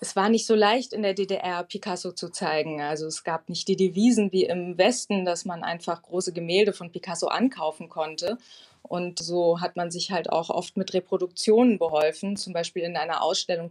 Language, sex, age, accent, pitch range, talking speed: German, female, 20-39, German, 170-200 Hz, 195 wpm